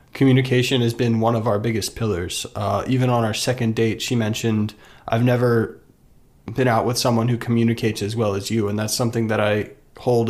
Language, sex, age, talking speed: English, male, 20-39, 200 wpm